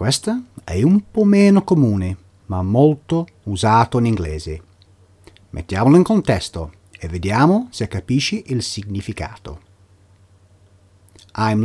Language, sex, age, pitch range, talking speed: Italian, male, 40-59, 95-130 Hz, 110 wpm